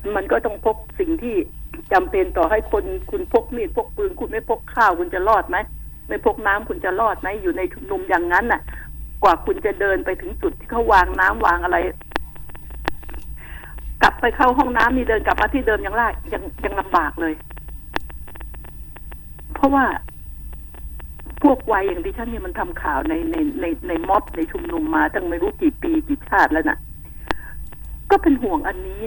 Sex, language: female, Thai